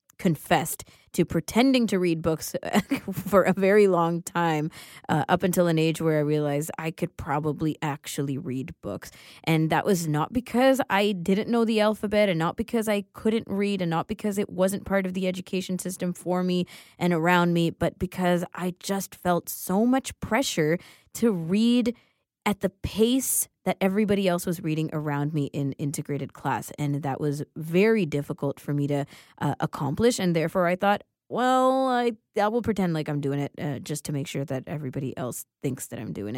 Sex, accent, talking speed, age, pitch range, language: female, American, 190 wpm, 20-39, 150-210 Hz, English